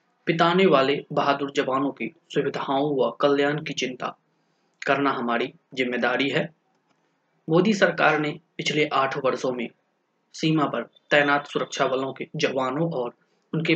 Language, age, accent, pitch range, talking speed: Hindi, 20-39, native, 135-175 Hz, 135 wpm